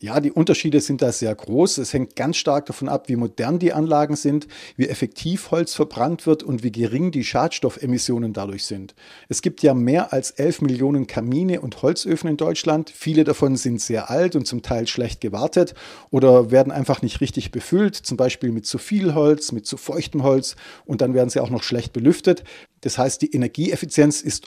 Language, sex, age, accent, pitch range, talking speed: German, male, 40-59, German, 125-155 Hz, 200 wpm